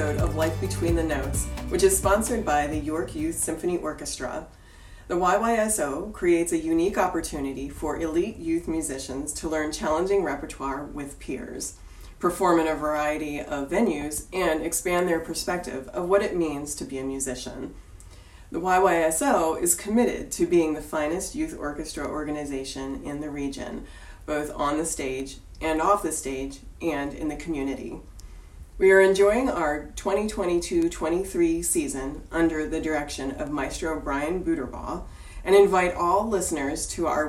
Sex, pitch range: female, 140-190 Hz